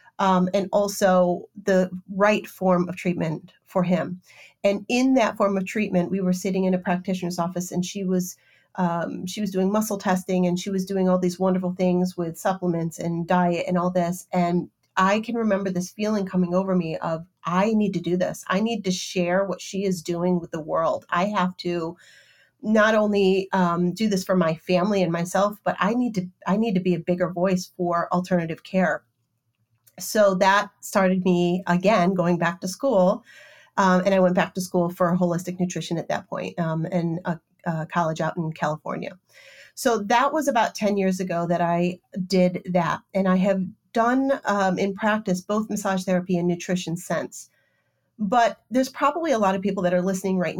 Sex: female